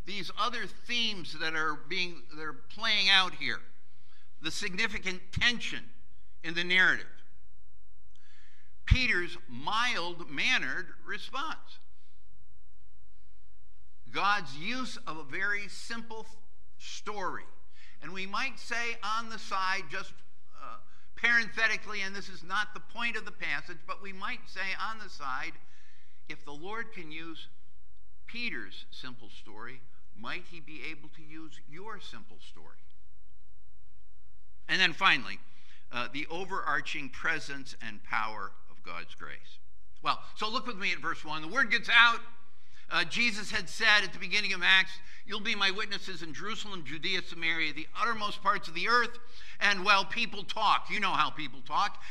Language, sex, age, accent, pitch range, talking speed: English, male, 60-79, American, 125-205 Hz, 145 wpm